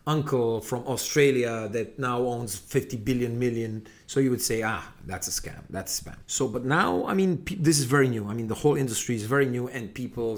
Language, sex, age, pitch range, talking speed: English, male, 40-59, 125-155 Hz, 225 wpm